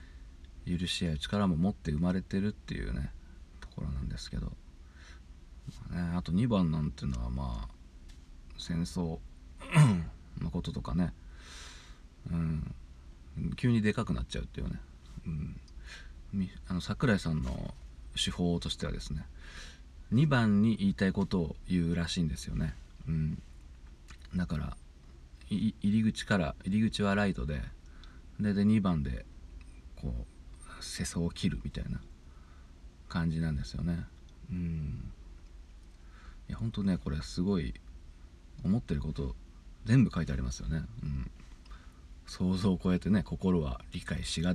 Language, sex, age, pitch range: Japanese, male, 40-59, 65-90 Hz